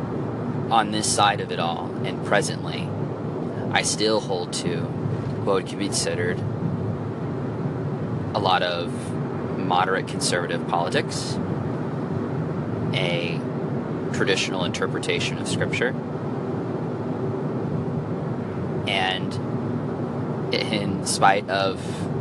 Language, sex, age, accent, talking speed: English, male, 20-39, American, 85 wpm